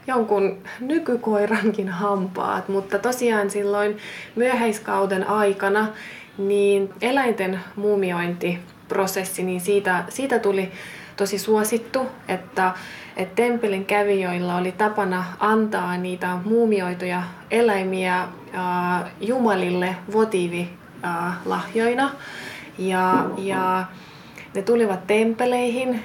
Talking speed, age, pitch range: 80 wpm, 20-39, 185-225 Hz